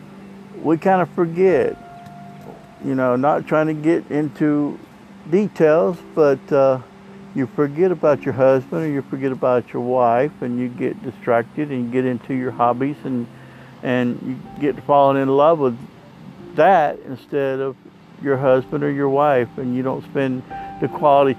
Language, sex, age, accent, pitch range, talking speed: English, male, 60-79, American, 125-170 Hz, 165 wpm